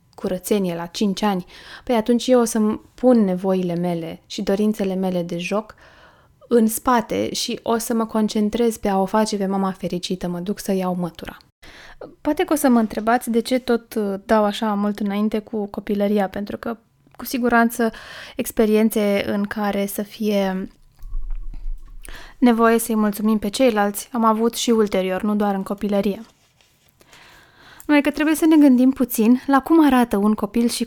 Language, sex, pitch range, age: Romanian, female, 200-240 Hz, 20-39